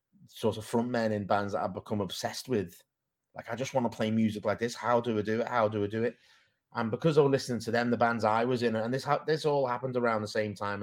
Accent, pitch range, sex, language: British, 100-120 Hz, male, English